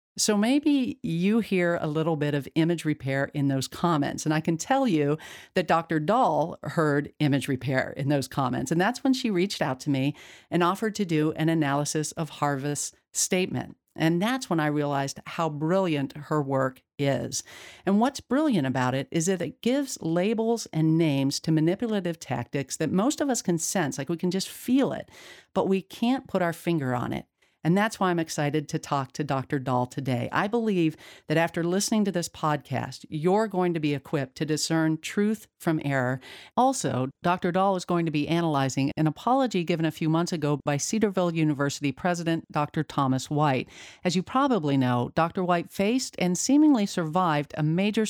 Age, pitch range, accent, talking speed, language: 50-69, 145-185 Hz, American, 190 wpm, English